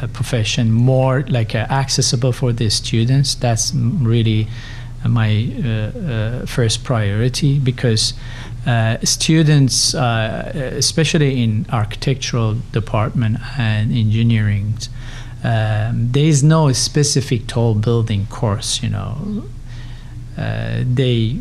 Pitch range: 115-130 Hz